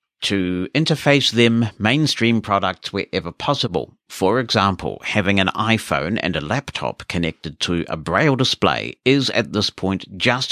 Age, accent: 60-79, British